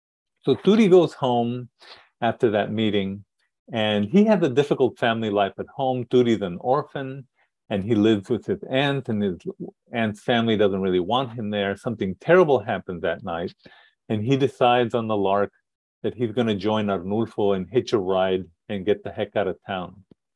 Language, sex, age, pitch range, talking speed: English, male, 50-69, 105-145 Hz, 185 wpm